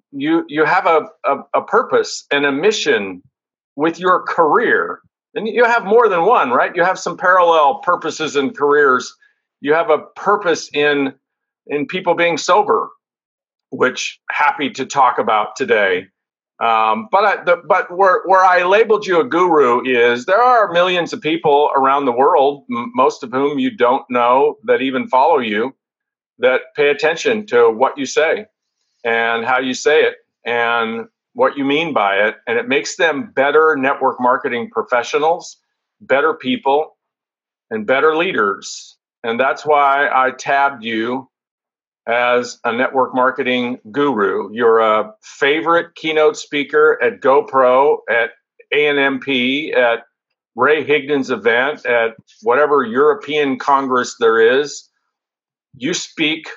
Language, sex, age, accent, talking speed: English, male, 50-69, American, 145 wpm